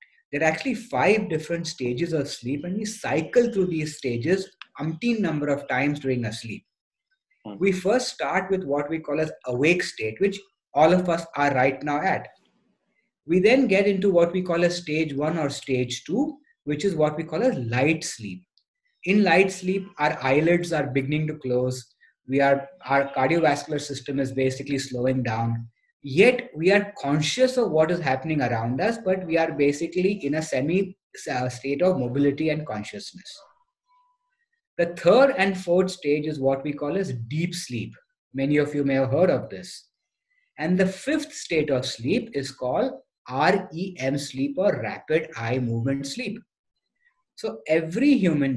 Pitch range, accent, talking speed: 140-195 Hz, Indian, 170 wpm